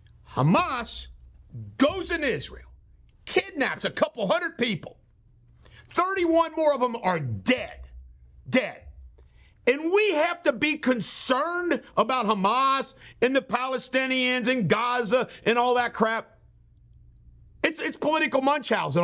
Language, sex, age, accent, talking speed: English, male, 50-69, American, 115 wpm